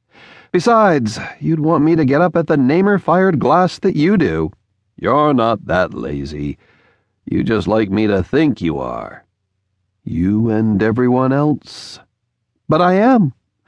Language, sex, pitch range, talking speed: English, male, 95-150 Hz, 145 wpm